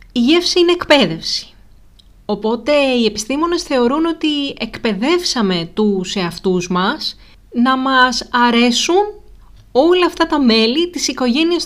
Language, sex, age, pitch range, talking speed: Greek, female, 30-49, 190-270 Hz, 115 wpm